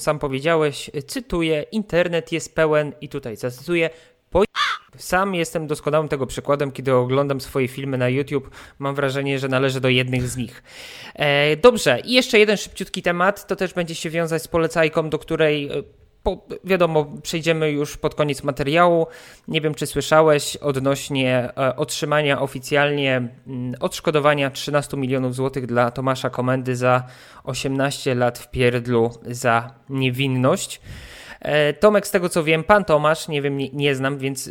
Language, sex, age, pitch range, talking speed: Polish, male, 20-39, 135-165 Hz, 145 wpm